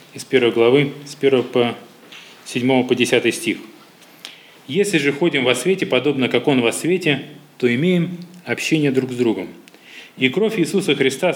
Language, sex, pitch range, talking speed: Russian, male, 125-165 Hz, 160 wpm